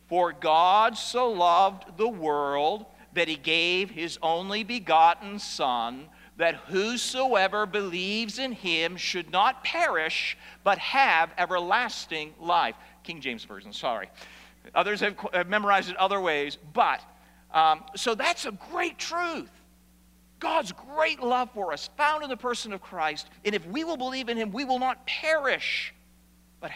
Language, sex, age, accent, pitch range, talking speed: English, male, 50-69, American, 160-235 Hz, 145 wpm